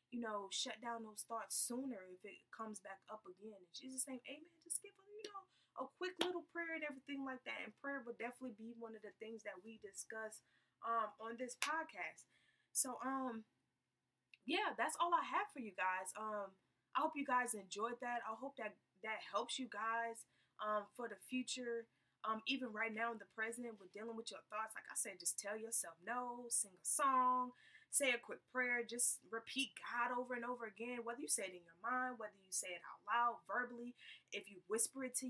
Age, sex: 20-39, female